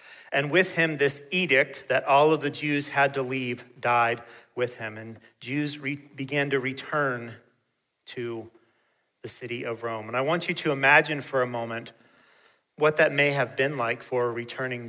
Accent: American